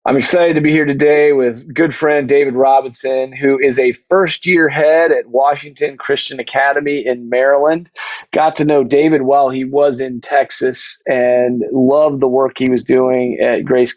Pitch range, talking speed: 125-145 Hz, 175 wpm